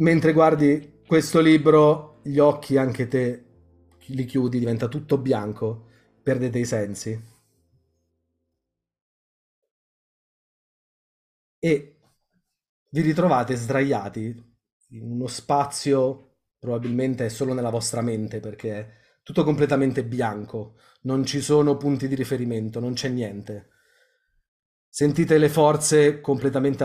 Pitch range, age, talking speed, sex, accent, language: 115-145 Hz, 30-49, 105 wpm, male, native, Italian